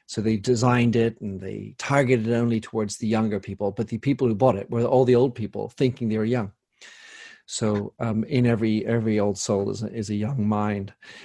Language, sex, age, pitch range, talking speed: English, male, 50-69, 110-135 Hz, 220 wpm